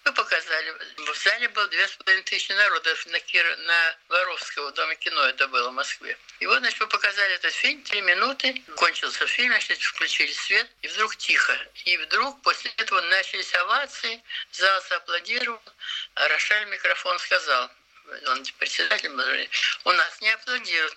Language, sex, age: Russian, male, 60-79